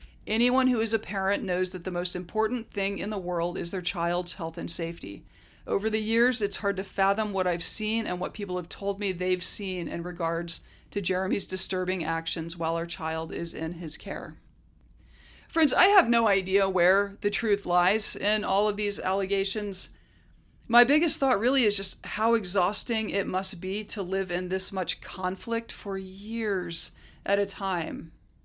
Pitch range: 180-225 Hz